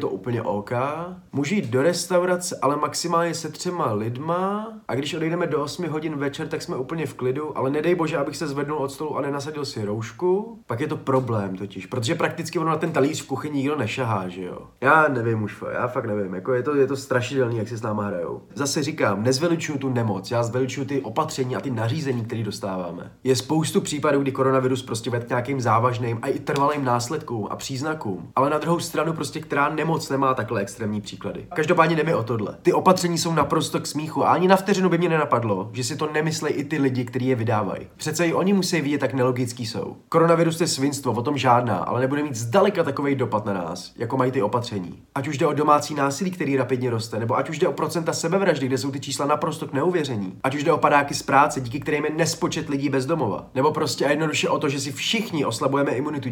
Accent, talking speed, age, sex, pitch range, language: native, 225 wpm, 30-49, male, 125-160 Hz, Czech